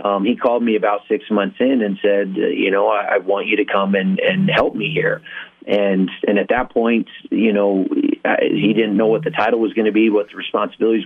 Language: English